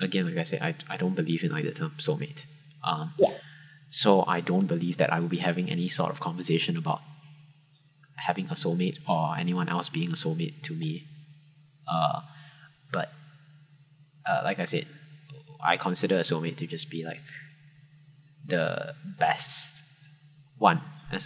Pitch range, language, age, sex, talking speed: 115-155 Hz, English, 20-39, male, 160 wpm